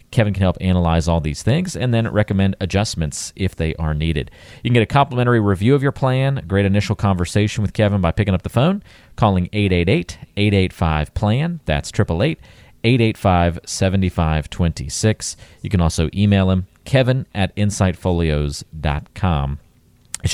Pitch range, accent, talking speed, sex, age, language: 85-115 Hz, American, 140 wpm, male, 40-59, English